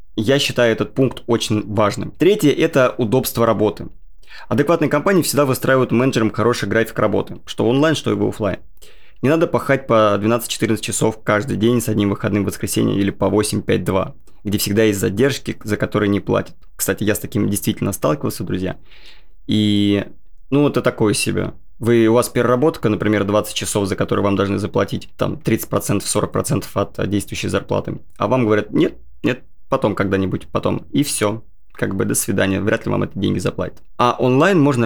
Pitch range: 105-125 Hz